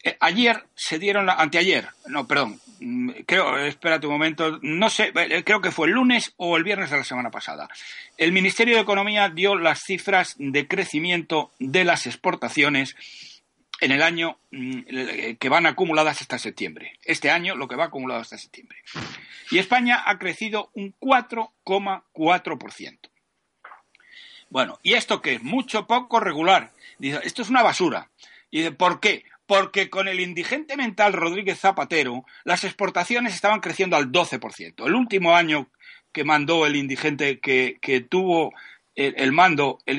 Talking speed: 155 wpm